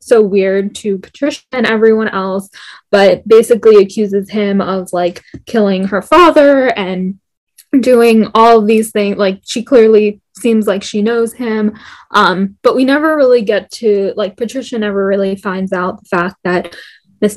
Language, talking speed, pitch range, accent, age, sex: English, 160 wpm, 200-230 Hz, American, 10-29, female